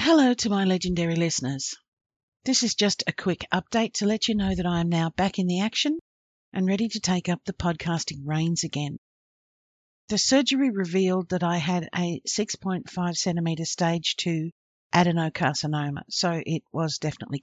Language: English